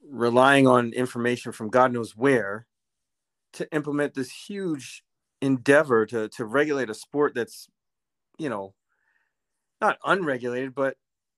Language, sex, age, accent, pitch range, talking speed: English, male, 40-59, American, 120-150 Hz, 120 wpm